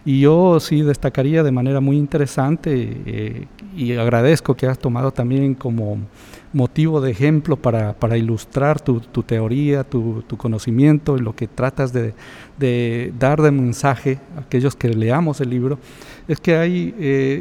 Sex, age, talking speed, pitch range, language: male, 50-69, 160 wpm, 125-155 Hz, Spanish